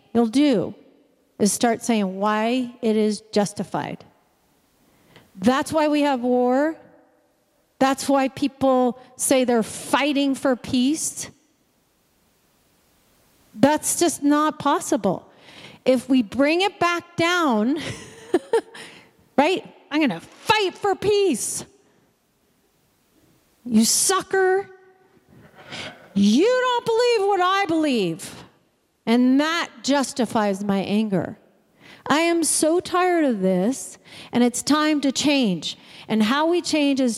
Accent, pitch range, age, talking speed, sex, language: American, 230-325 Hz, 40-59, 110 wpm, female, English